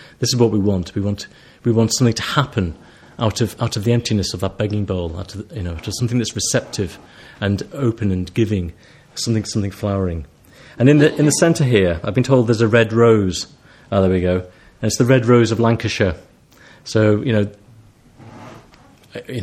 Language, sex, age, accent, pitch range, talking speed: English, male, 30-49, British, 95-125 Hz, 205 wpm